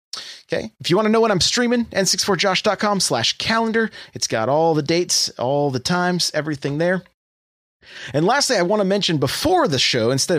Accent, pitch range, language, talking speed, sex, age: American, 125-195 Hz, English, 185 wpm, male, 30-49